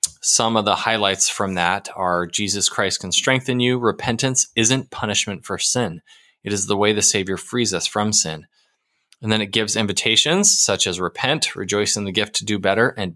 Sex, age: male, 20-39